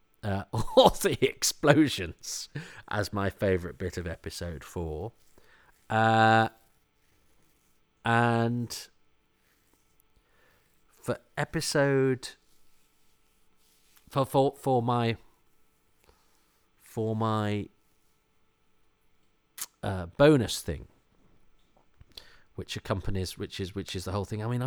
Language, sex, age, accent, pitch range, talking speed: English, male, 40-59, British, 90-130 Hz, 85 wpm